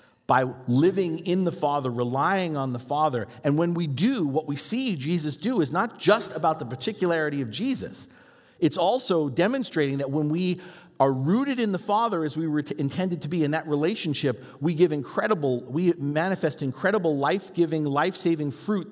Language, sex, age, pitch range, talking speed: English, male, 50-69, 125-170 Hz, 175 wpm